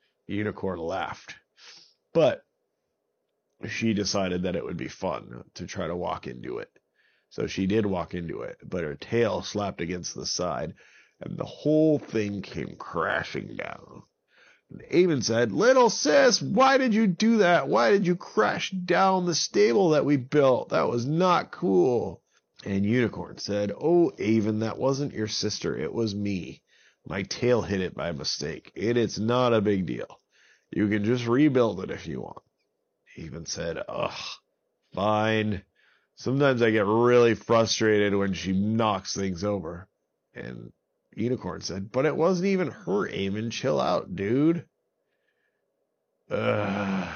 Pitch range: 100-140 Hz